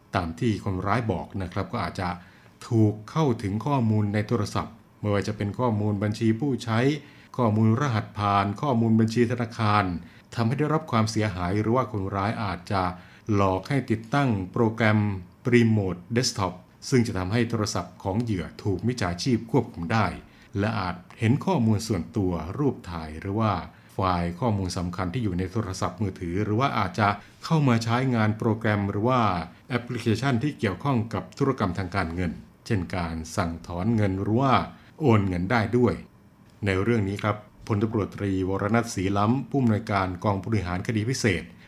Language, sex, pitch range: Thai, male, 95-115 Hz